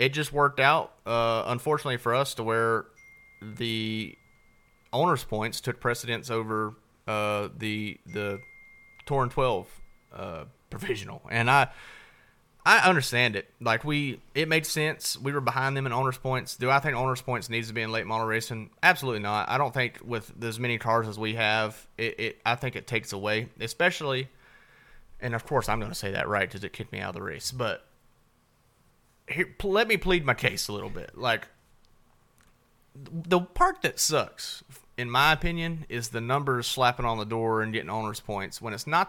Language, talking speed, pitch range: English, 185 wpm, 110-145 Hz